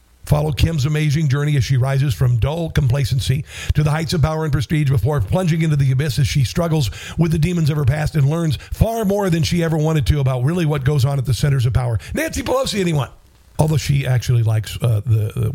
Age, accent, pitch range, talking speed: 50-69, American, 110-150 Hz, 230 wpm